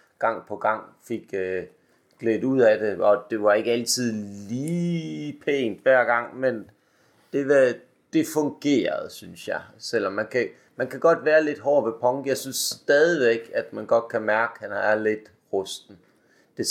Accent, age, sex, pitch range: native, 30-49, male, 110-140 Hz